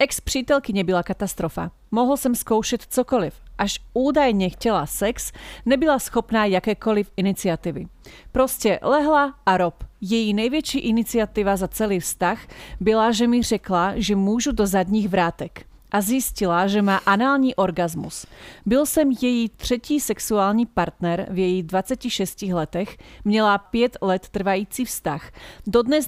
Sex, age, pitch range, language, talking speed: female, 40-59, 190-245 Hz, Slovak, 130 wpm